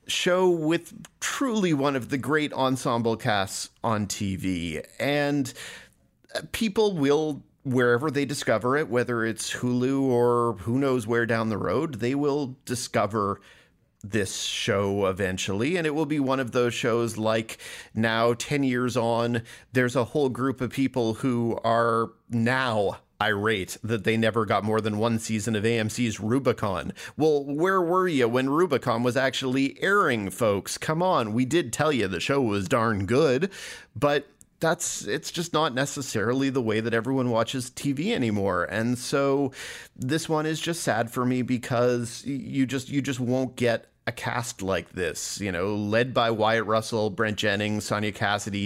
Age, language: 40-59, English